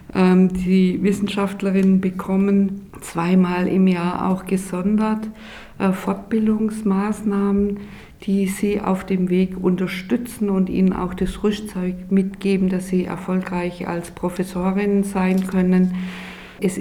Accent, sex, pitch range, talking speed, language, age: German, female, 185-200 Hz, 105 wpm, German, 50-69